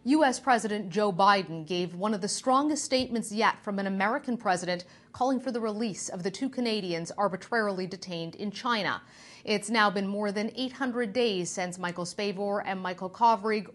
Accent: American